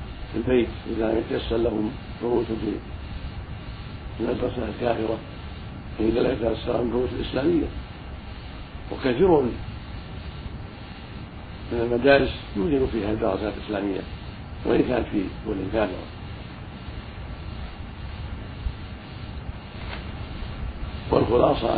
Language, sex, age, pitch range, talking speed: Arabic, male, 60-79, 90-110 Hz, 80 wpm